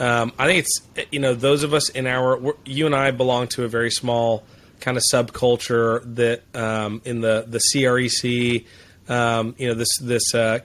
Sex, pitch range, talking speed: male, 110-125 Hz, 190 wpm